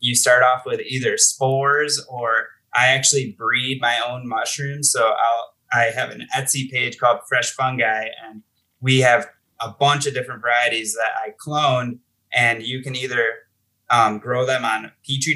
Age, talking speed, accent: 20-39, 170 wpm, American